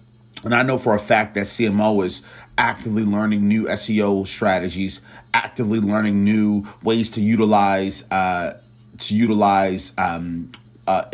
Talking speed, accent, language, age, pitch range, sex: 135 wpm, American, English, 30-49, 100-115 Hz, male